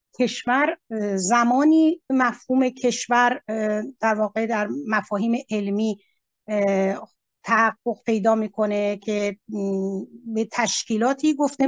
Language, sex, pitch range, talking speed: Persian, female, 215-260 Hz, 80 wpm